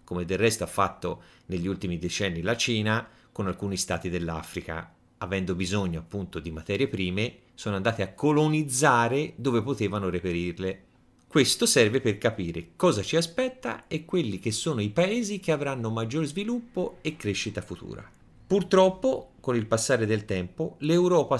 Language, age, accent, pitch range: Italian, 30-49, native, 95-125 Hz